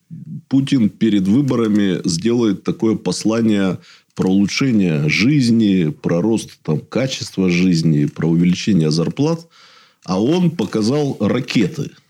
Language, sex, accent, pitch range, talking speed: Russian, male, native, 95-135 Hz, 100 wpm